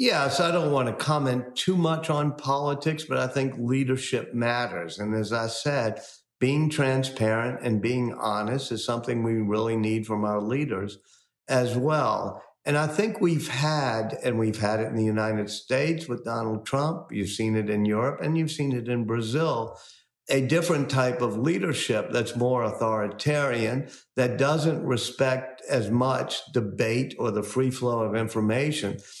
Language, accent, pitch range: Portuguese, American, 115-150 Hz